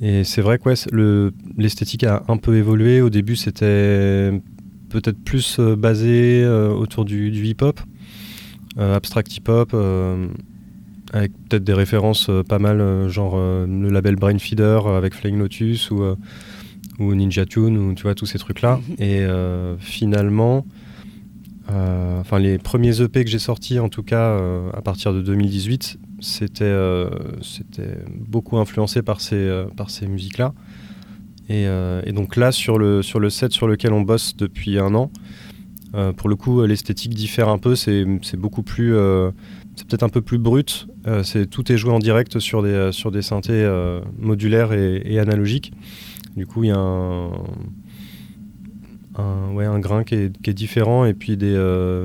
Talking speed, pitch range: 180 wpm, 100-115 Hz